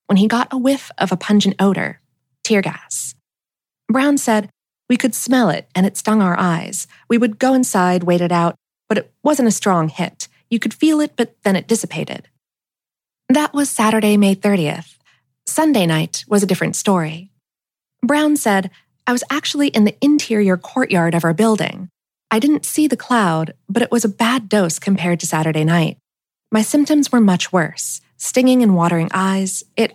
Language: English